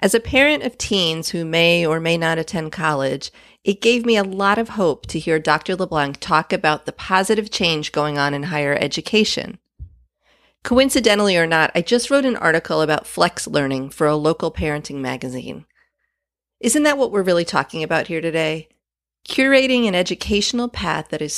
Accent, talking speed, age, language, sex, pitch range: American, 180 wpm, 30-49, English, female, 155-205 Hz